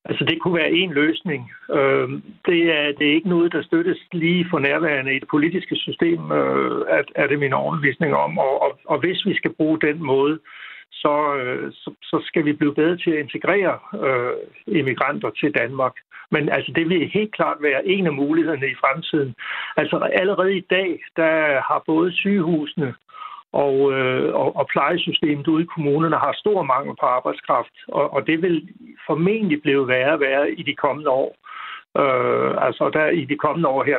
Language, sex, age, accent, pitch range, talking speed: Danish, male, 60-79, native, 145-175 Hz, 185 wpm